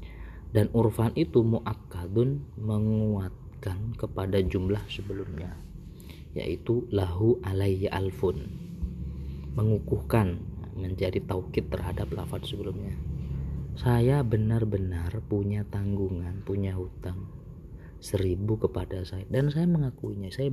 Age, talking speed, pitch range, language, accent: 30-49, 90 wpm, 90-110 Hz, Indonesian, native